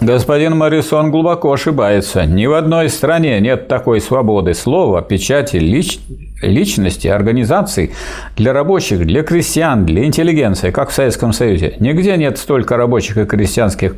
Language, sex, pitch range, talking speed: Russian, male, 105-150 Hz, 135 wpm